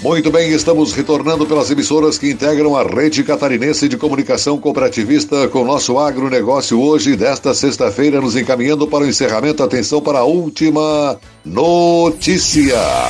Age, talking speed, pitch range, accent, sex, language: 60-79, 140 wpm, 115-145 Hz, Brazilian, male, Portuguese